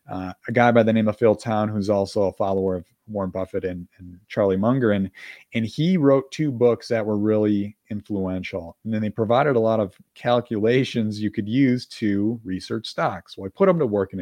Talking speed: 220 wpm